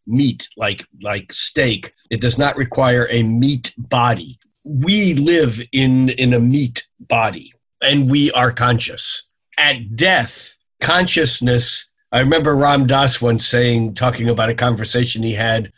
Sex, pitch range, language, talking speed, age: male, 115-135 Hz, English, 140 wpm, 50-69